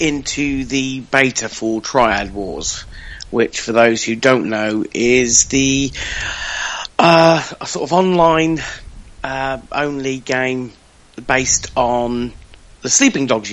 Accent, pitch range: British, 120-145 Hz